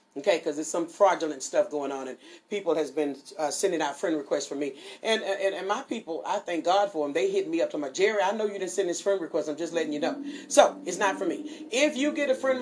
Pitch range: 160-255 Hz